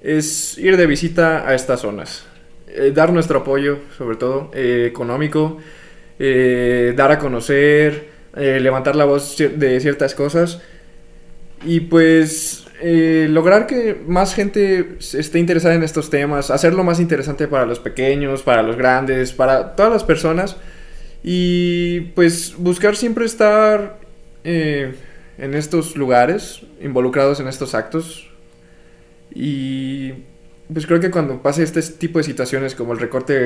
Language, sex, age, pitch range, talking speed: Spanish, male, 20-39, 130-160 Hz, 140 wpm